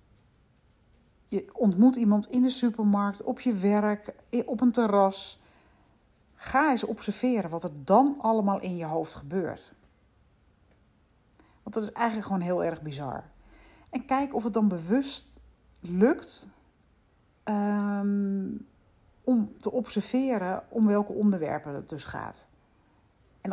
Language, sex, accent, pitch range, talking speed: Dutch, female, Dutch, 180-230 Hz, 120 wpm